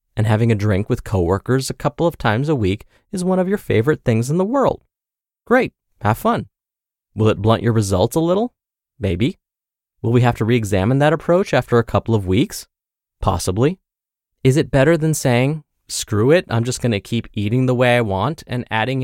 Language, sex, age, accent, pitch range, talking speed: English, male, 30-49, American, 110-160 Hz, 200 wpm